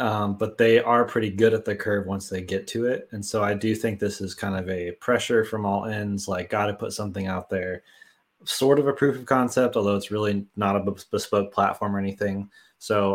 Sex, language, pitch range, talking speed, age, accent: male, English, 95-110 Hz, 235 wpm, 20-39, American